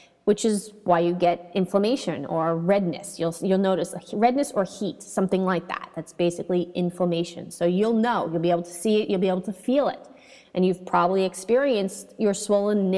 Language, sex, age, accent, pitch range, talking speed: English, female, 30-49, American, 185-250 Hz, 190 wpm